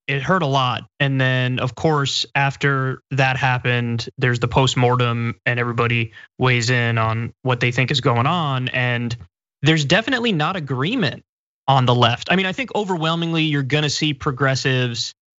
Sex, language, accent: male, English, American